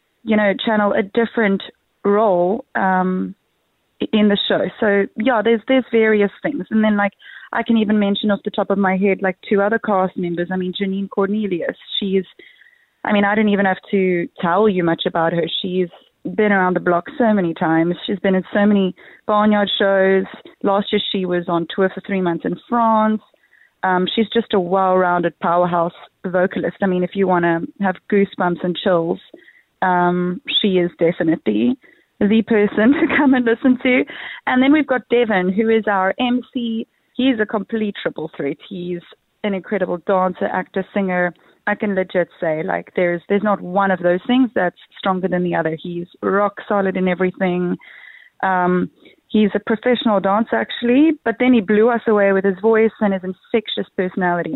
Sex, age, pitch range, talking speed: female, 30-49, 180-220 Hz, 185 wpm